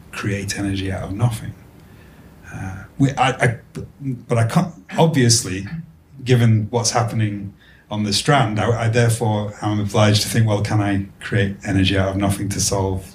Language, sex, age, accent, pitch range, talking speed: English, male, 30-49, British, 95-120 Hz, 170 wpm